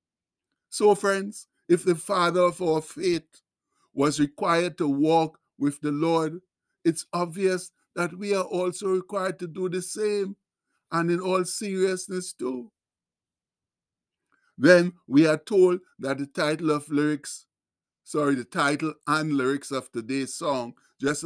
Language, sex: English, male